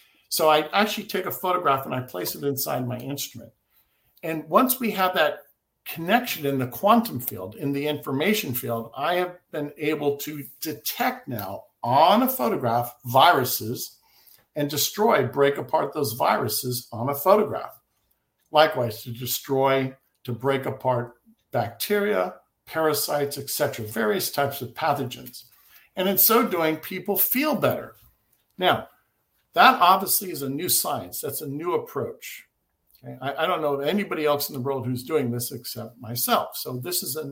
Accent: American